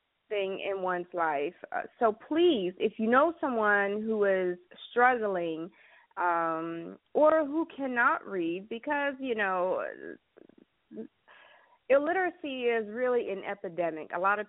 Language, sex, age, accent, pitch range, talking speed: English, female, 30-49, American, 195-270 Hz, 125 wpm